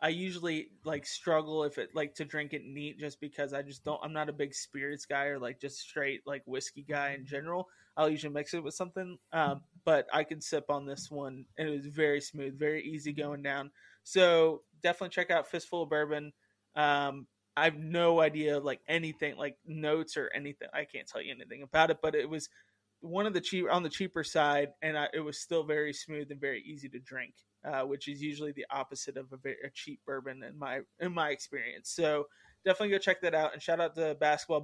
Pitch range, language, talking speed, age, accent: 145-160 Hz, English, 225 wpm, 20-39, American